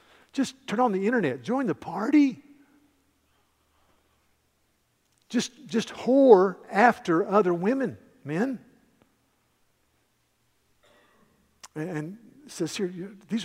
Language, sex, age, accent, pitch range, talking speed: English, male, 50-69, American, 155-210 Hz, 95 wpm